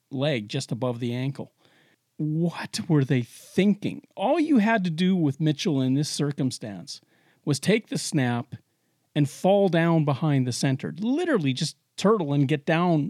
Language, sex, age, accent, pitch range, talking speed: English, male, 40-59, American, 145-205 Hz, 160 wpm